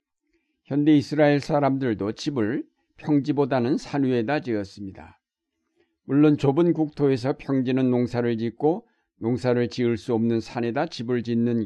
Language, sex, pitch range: Korean, male, 115-145 Hz